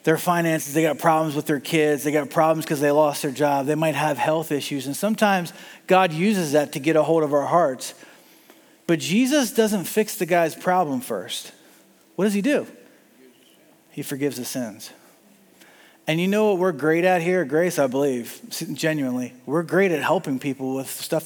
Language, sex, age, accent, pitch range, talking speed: English, male, 40-59, American, 150-195 Hz, 190 wpm